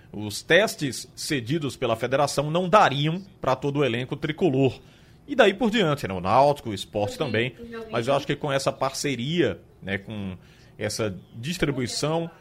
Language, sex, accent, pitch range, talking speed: Portuguese, male, Brazilian, 115-160 Hz, 155 wpm